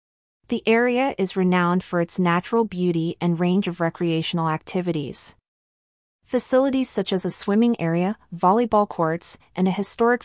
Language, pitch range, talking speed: English, 170-200 Hz, 140 wpm